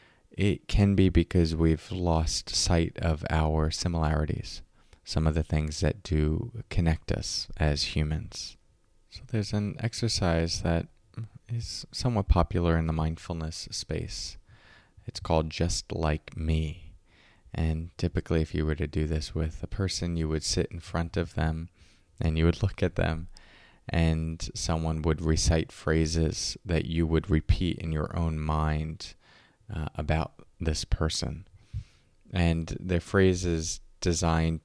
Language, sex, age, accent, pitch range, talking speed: English, male, 20-39, American, 80-100 Hz, 145 wpm